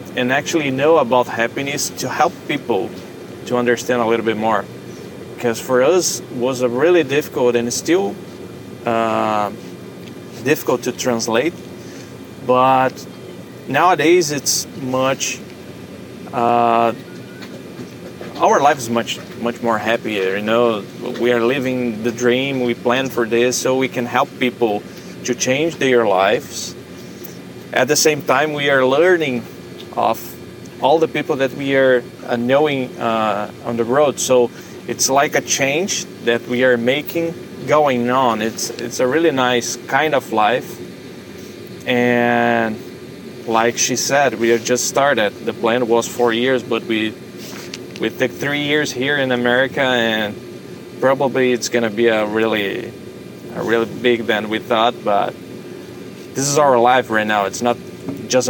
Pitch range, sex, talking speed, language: 115-130 Hz, male, 150 wpm, English